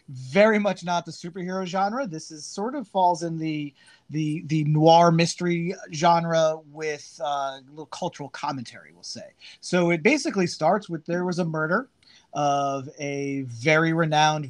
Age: 30-49